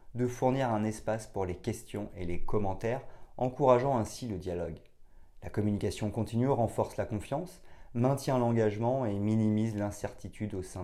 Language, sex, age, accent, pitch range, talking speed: French, male, 30-49, French, 95-120 Hz, 150 wpm